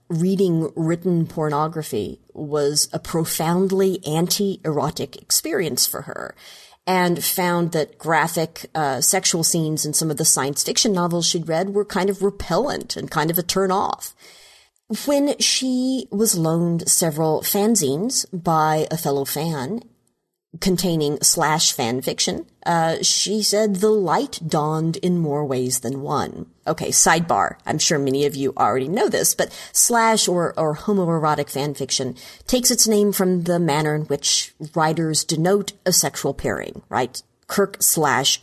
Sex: female